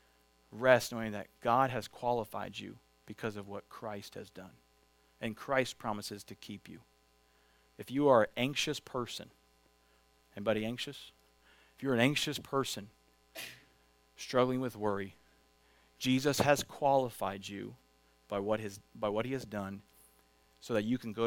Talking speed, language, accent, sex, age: 145 wpm, English, American, male, 40-59